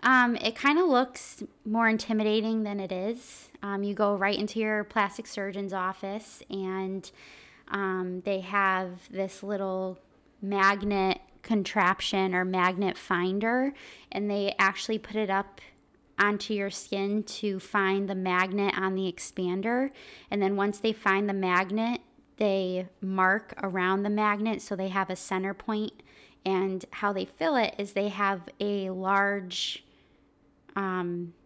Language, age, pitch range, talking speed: English, 20-39, 190-210 Hz, 145 wpm